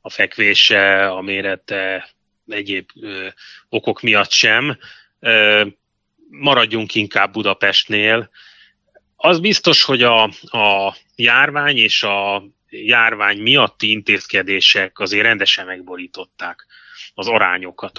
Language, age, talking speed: Hungarian, 30-49, 95 wpm